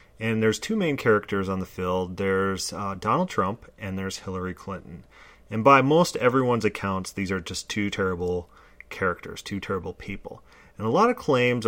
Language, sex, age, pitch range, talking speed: English, male, 30-49, 95-110 Hz, 180 wpm